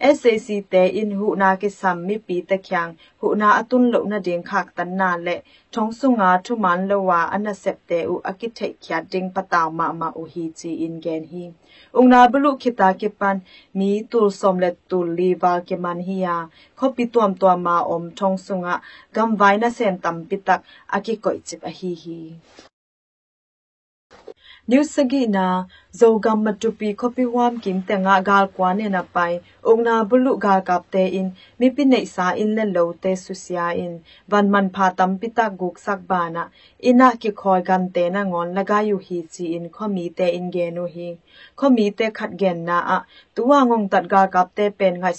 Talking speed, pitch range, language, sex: 85 wpm, 175-215 Hz, English, female